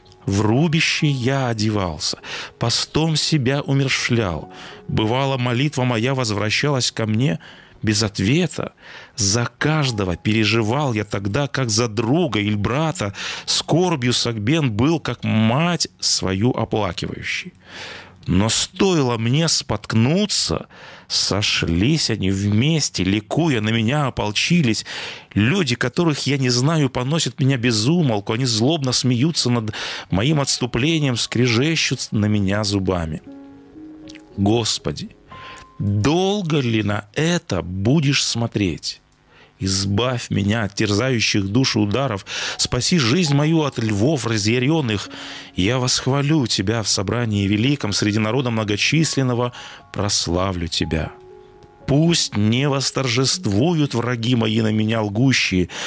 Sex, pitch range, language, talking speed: male, 105-140 Hz, Russian, 105 wpm